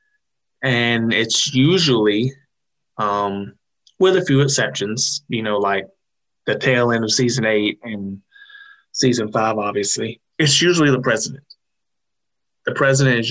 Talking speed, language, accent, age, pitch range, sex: 125 wpm, English, American, 30-49, 110-135 Hz, male